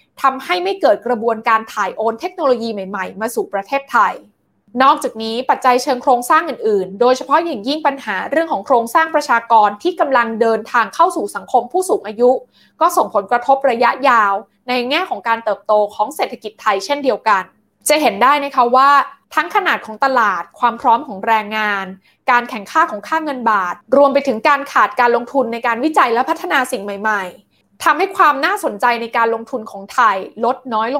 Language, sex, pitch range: Thai, female, 220-290 Hz